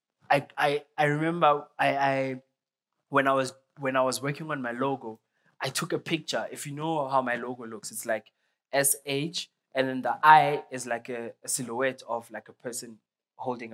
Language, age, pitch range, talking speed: English, 20-39, 120-150 Hz, 190 wpm